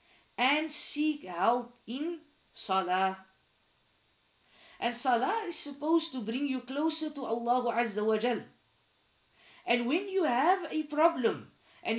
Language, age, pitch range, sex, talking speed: English, 40-59, 170-255 Hz, female, 125 wpm